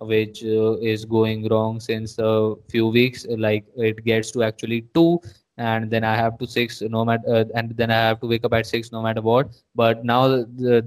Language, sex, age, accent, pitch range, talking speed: Telugu, male, 20-39, native, 115-130 Hz, 215 wpm